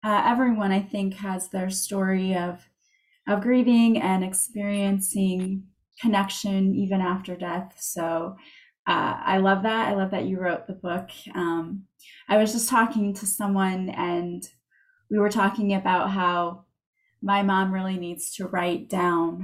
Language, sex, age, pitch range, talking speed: English, female, 20-39, 185-210 Hz, 150 wpm